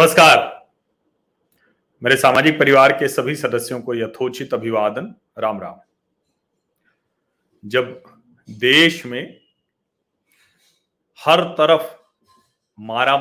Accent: native